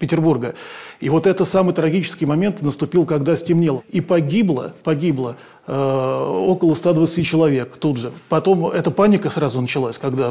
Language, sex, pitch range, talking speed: Russian, male, 150-180 Hz, 145 wpm